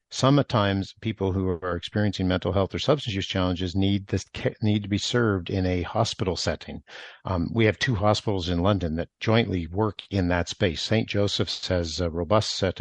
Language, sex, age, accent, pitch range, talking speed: English, male, 50-69, American, 90-110 Hz, 190 wpm